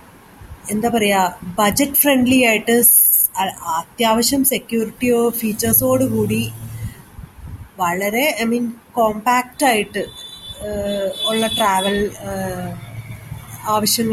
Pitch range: 185-250 Hz